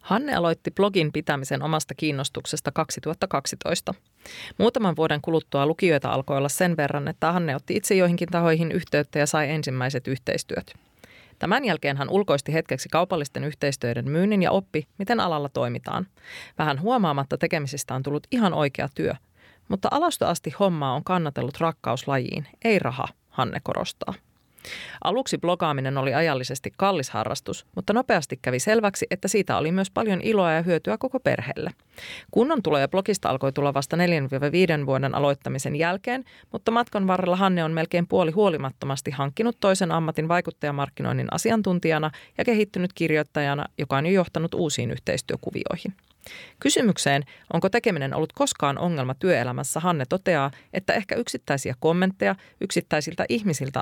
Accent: native